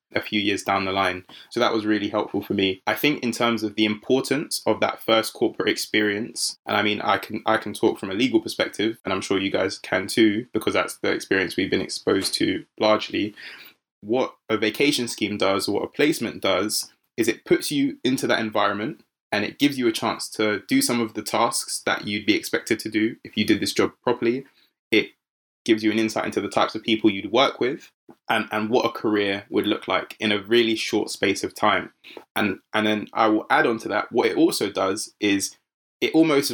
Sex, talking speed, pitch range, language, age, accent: male, 225 wpm, 105-125 Hz, English, 20-39, British